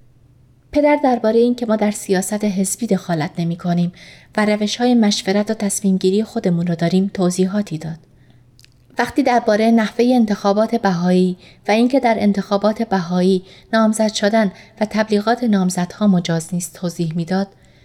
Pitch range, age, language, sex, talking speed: 175-235 Hz, 30-49, Persian, female, 130 wpm